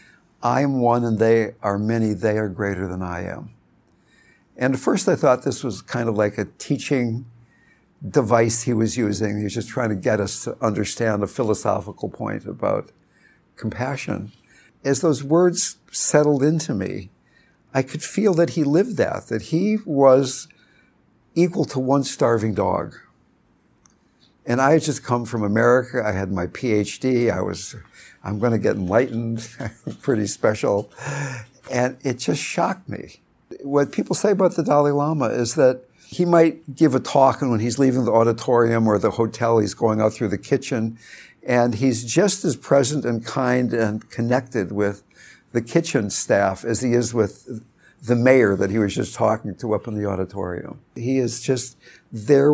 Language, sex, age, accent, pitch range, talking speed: English, male, 60-79, American, 110-140 Hz, 170 wpm